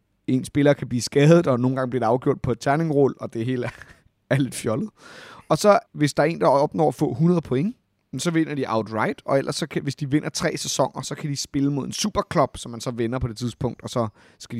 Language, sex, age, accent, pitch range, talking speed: Danish, male, 30-49, native, 115-170 Hz, 250 wpm